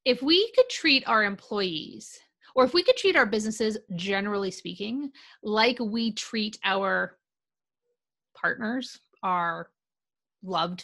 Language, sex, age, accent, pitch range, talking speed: English, female, 30-49, American, 205-270 Hz, 120 wpm